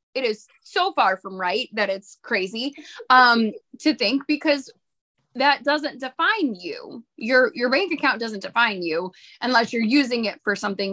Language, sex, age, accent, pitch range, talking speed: English, female, 20-39, American, 210-275 Hz, 165 wpm